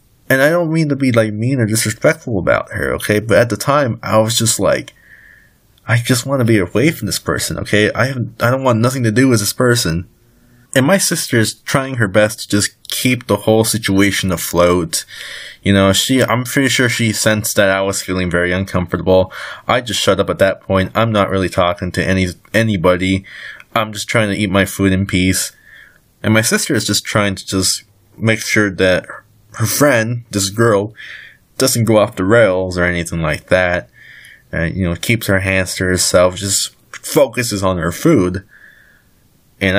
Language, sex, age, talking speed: English, male, 20-39, 200 wpm